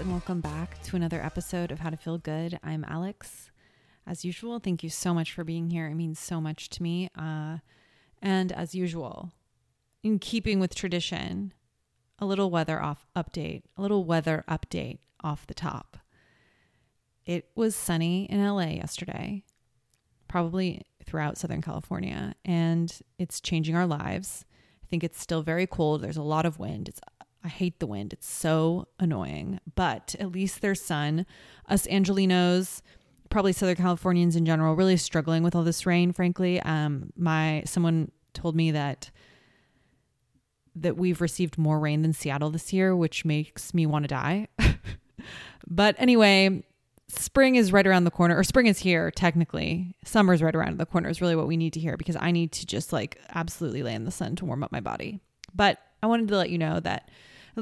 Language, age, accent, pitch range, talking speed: English, 30-49, American, 160-185 Hz, 180 wpm